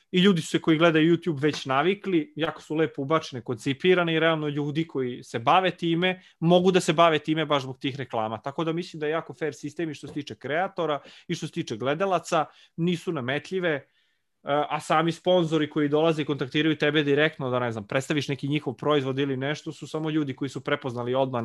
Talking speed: 210 wpm